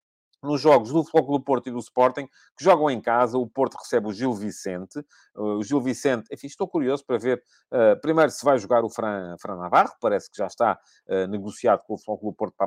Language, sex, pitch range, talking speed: Portuguese, male, 105-155 Hz, 225 wpm